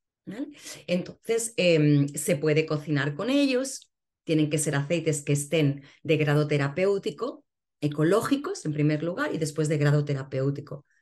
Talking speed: 140 wpm